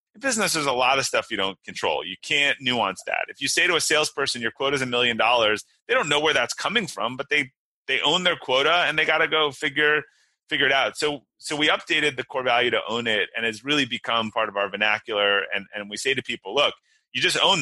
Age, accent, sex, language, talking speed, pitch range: 30-49, American, male, English, 260 wpm, 110-150 Hz